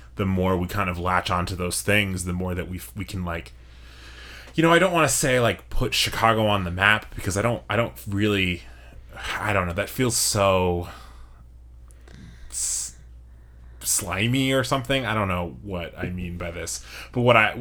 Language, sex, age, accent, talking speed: English, male, 20-39, American, 185 wpm